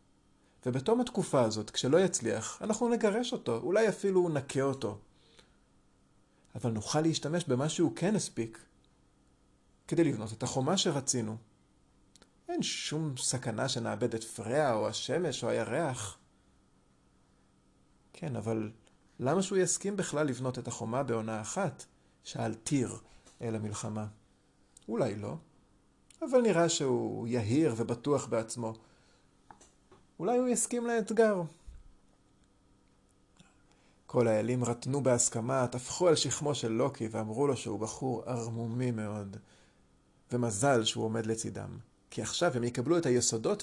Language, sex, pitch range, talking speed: Hebrew, male, 105-140 Hz, 120 wpm